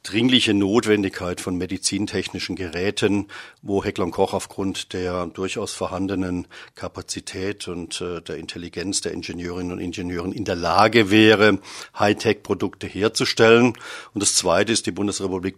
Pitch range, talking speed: 95-115 Hz, 130 wpm